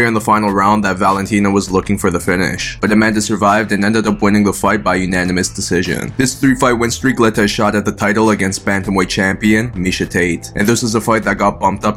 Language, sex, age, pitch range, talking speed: English, male, 20-39, 100-115 Hz, 245 wpm